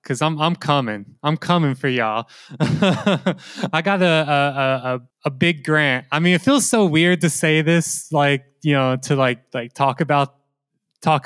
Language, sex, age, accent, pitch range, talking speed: English, male, 20-39, American, 140-170 Hz, 180 wpm